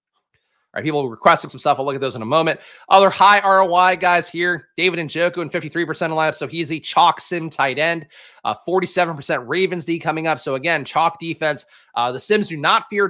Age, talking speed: 30-49, 215 wpm